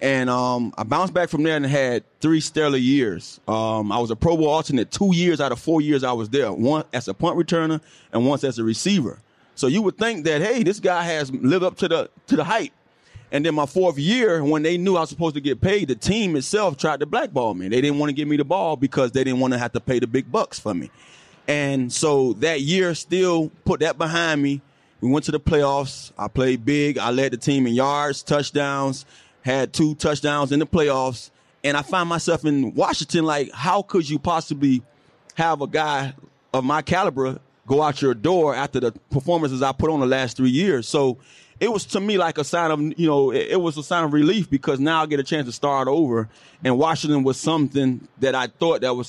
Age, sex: 30-49, male